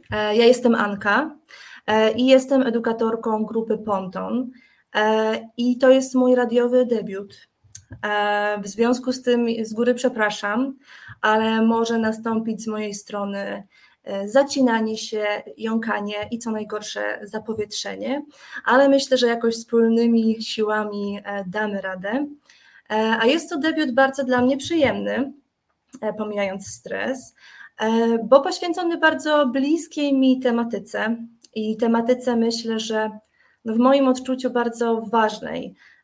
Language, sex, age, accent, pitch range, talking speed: Polish, female, 20-39, native, 215-265 Hz, 110 wpm